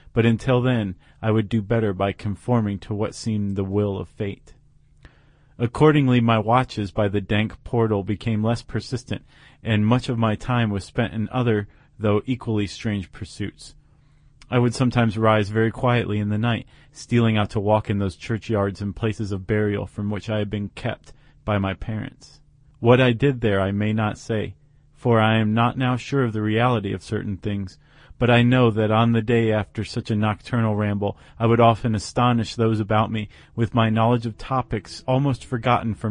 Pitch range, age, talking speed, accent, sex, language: 105-120 Hz, 40-59, 190 wpm, American, male, English